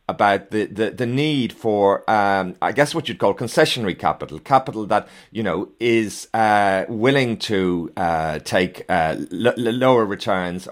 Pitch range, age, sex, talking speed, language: 100-130 Hz, 40-59, male, 155 wpm, English